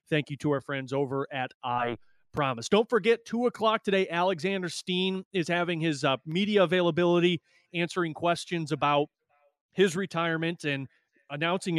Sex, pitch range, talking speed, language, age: male, 145-180 Hz, 150 wpm, English, 30-49